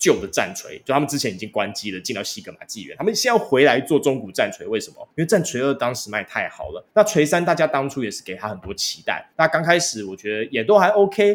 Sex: male